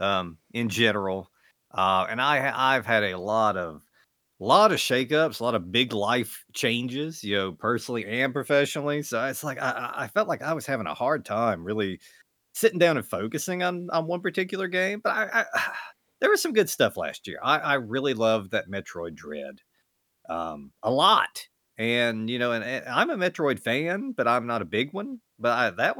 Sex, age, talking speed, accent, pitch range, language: male, 40-59, 195 wpm, American, 105-155 Hz, English